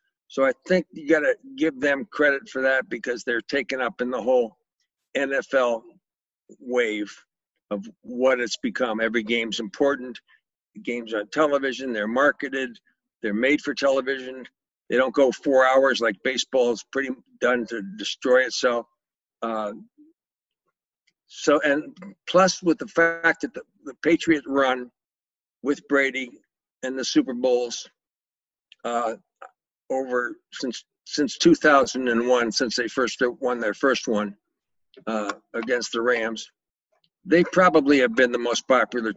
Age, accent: 60-79, American